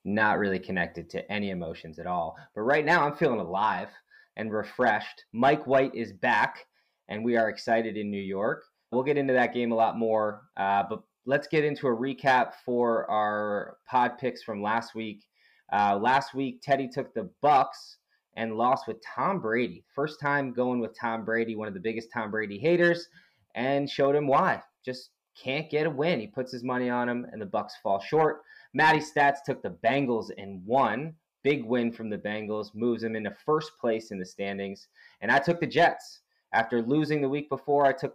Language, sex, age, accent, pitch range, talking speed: English, male, 20-39, American, 115-145 Hz, 200 wpm